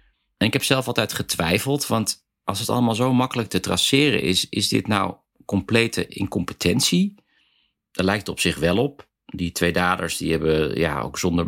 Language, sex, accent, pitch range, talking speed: Dutch, male, Dutch, 90-115 Hz, 185 wpm